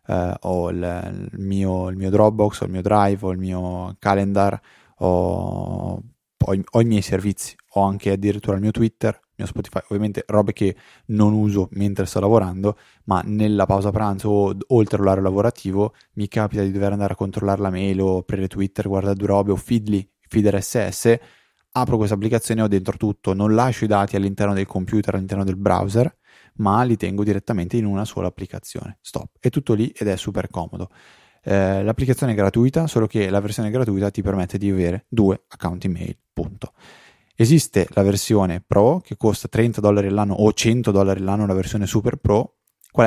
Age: 20-39